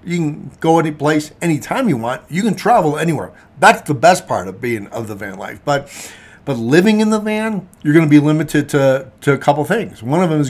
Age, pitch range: 50-69, 110-150 Hz